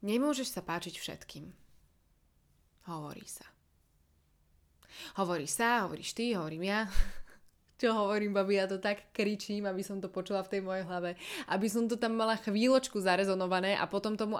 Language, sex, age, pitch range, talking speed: Slovak, female, 20-39, 160-210 Hz, 155 wpm